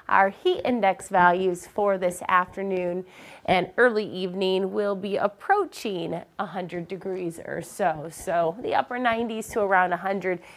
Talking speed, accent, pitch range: 135 wpm, American, 180-240 Hz